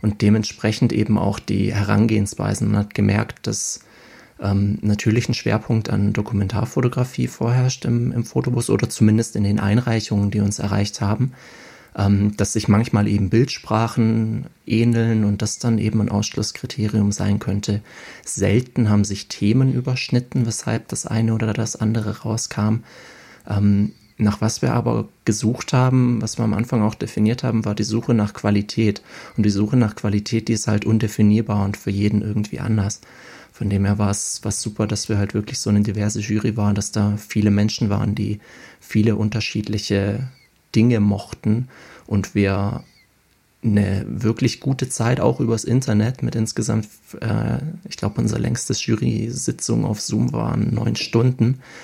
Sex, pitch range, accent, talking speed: male, 105-115 Hz, German, 155 wpm